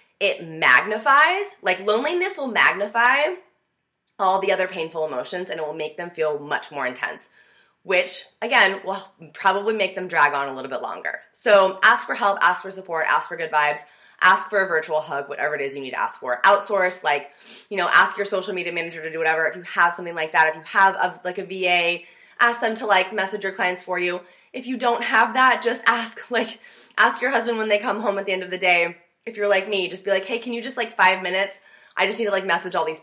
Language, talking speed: English, 240 wpm